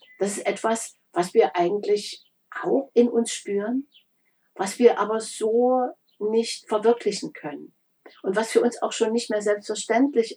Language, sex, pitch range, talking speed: German, female, 190-240 Hz, 150 wpm